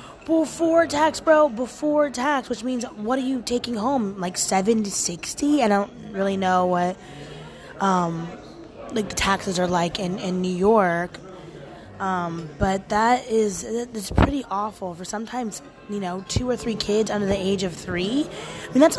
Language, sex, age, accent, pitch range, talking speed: English, female, 20-39, American, 190-265 Hz, 170 wpm